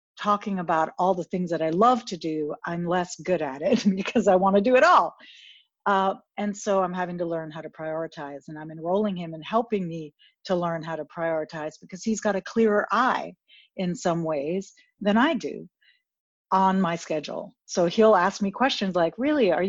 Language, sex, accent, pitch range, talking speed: English, female, American, 165-205 Hz, 205 wpm